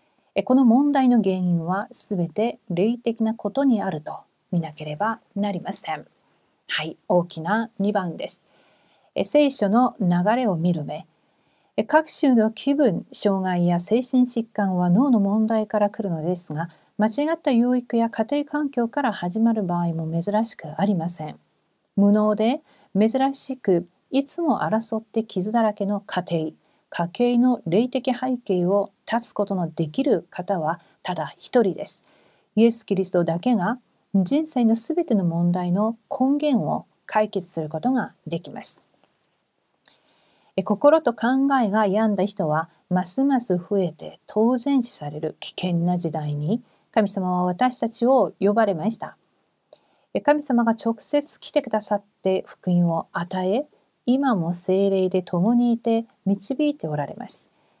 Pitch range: 180-245 Hz